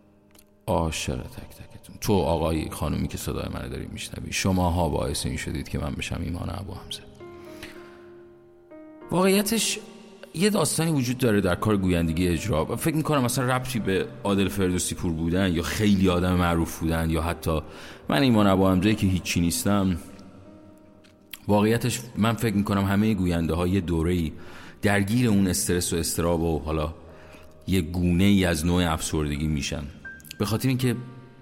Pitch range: 85-115 Hz